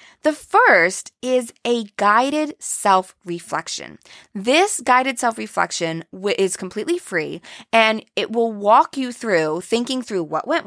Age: 20-39